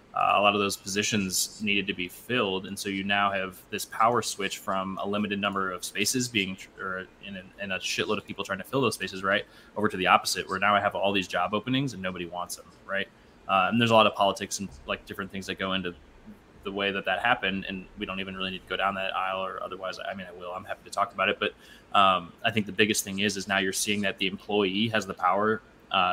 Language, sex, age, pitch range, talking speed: English, male, 20-39, 95-100 Hz, 265 wpm